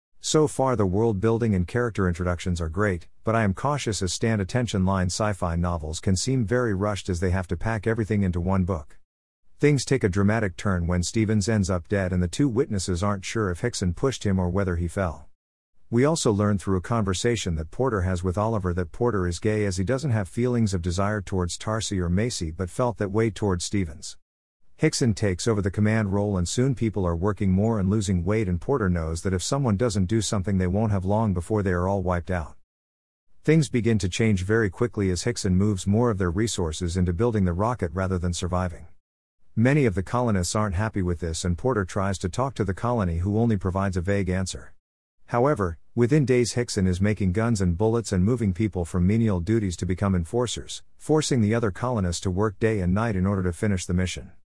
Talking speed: 215 wpm